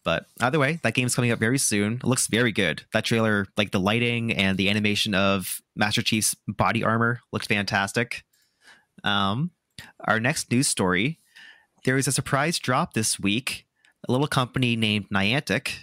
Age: 30-49